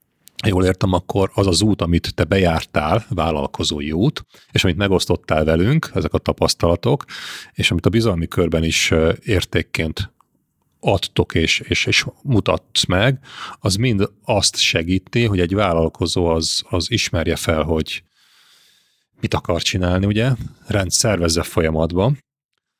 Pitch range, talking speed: 80-100 Hz, 130 wpm